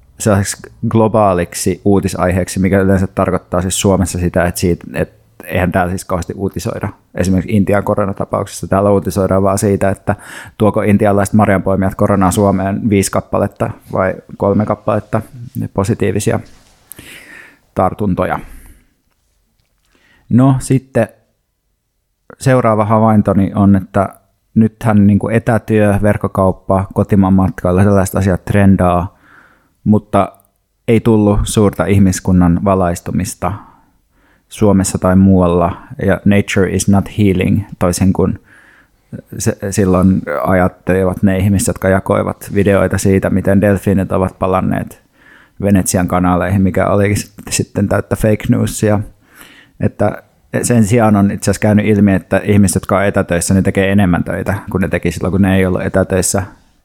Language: Finnish